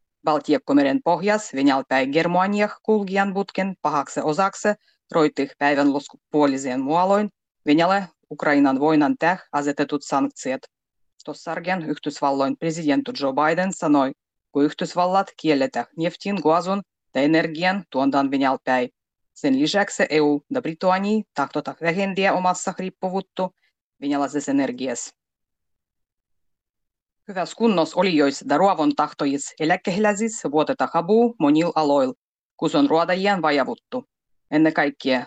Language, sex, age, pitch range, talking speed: Finnish, female, 30-49, 140-195 Hz, 105 wpm